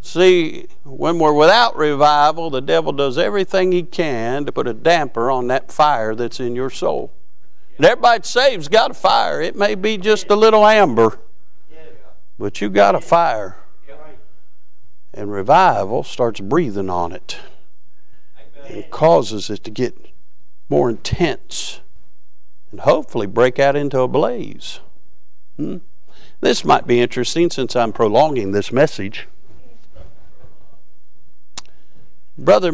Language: English